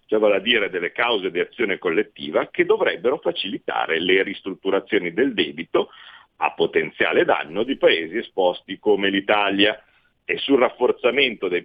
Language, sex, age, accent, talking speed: Italian, male, 50-69, native, 140 wpm